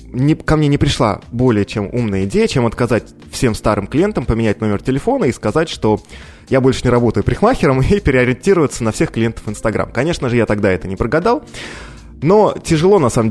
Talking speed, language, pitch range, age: 185 wpm, Russian, 105-150 Hz, 20-39